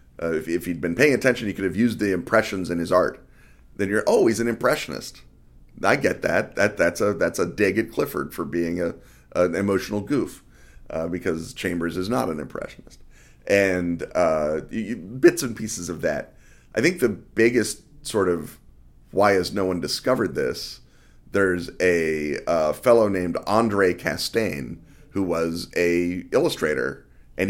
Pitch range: 85-105 Hz